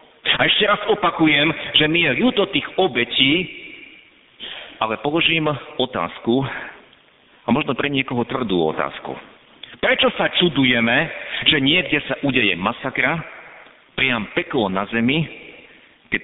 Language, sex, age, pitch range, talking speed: Slovak, male, 50-69, 120-155 Hz, 120 wpm